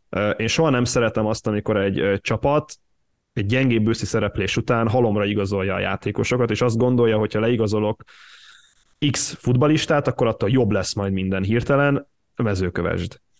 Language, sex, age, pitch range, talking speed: Hungarian, male, 20-39, 105-125 Hz, 145 wpm